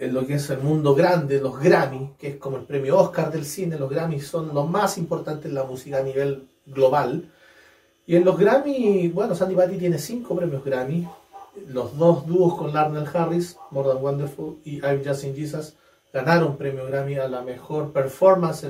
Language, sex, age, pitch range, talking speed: Spanish, male, 30-49, 140-180 Hz, 195 wpm